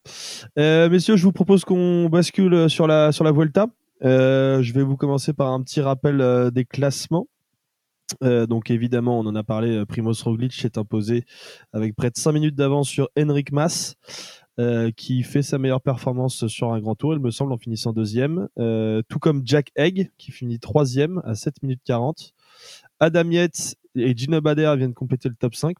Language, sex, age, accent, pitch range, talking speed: French, male, 20-39, French, 120-155 Hz, 190 wpm